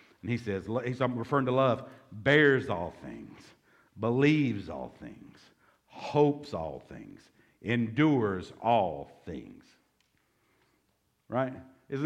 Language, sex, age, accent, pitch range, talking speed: English, male, 50-69, American, 115-145 Hz, 105 wpm